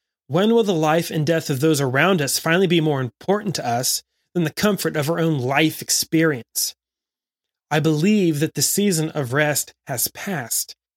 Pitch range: 130-170 Hz